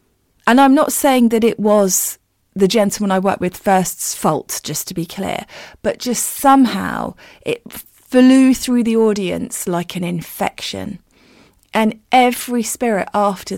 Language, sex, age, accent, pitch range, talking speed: English, female, 30-49, British, 175-215 Hz, 145 wpm